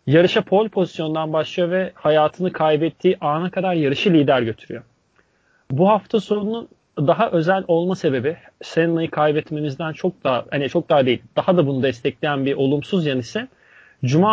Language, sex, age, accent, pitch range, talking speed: Turkish, male, 40-59, native, 145-180 Hz, 150 wpm